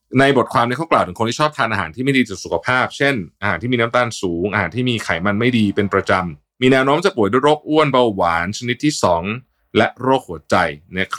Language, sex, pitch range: Thai, male, 95-125 Hz